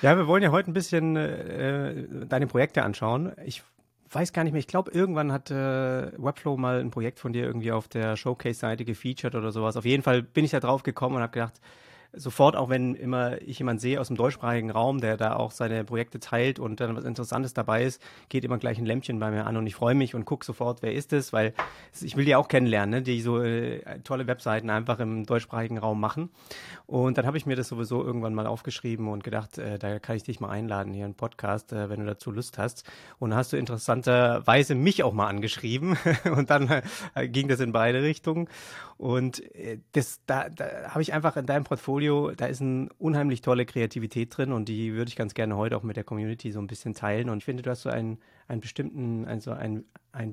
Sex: male